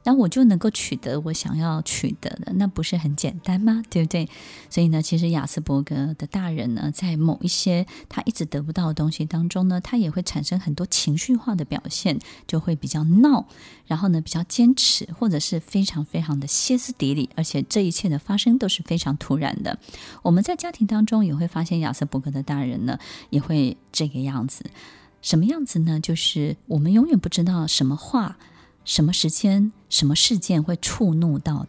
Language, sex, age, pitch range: Chinese, female, 20-39, 155-220 Hz